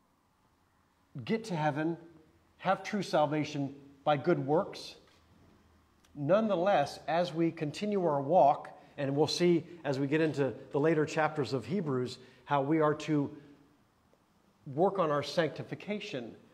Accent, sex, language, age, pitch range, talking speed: American, male, English, 40-59, 140-180 Hz, 125 wpm